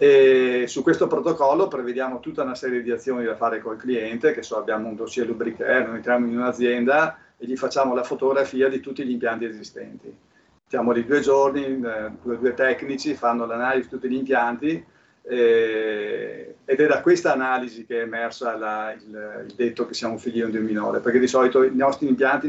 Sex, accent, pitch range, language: male, native, 115-135 Hz, Italian